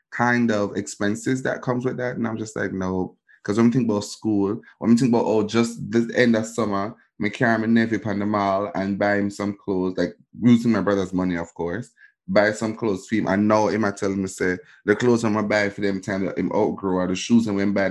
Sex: male